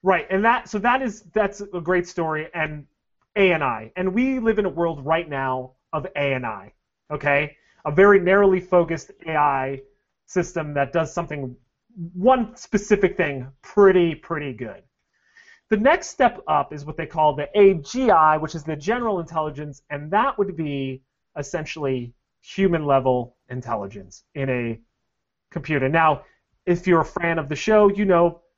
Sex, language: male, English